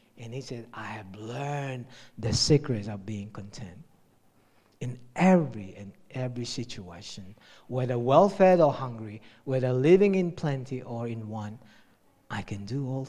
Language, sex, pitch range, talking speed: English, male, 110-145 Hz, 140 wpm